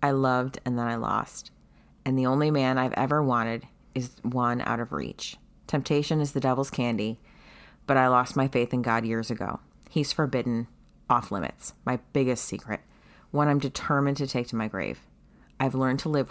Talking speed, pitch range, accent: 190 wpm, 115-135 Hz, American